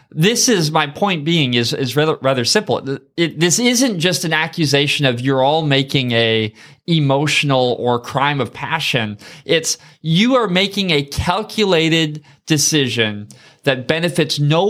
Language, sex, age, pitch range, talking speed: English, male, 20-39, 125-165 Hz, 145 wpm